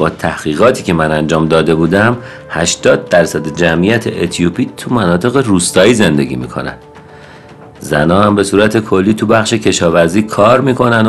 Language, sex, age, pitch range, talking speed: Persian, male, 50-69, 95-115 Hz, 140 wpm